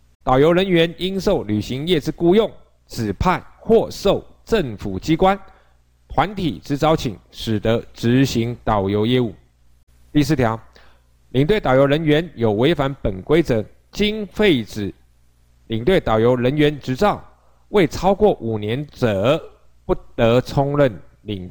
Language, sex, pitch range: Chinese, male, 95-150 Hz